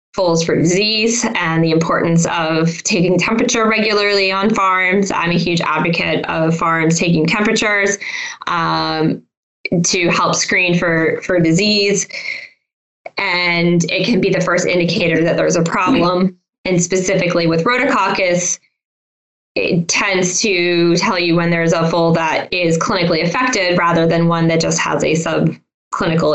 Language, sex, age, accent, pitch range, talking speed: English, female, 10-29, American, 175-215 Hz, 145 wpm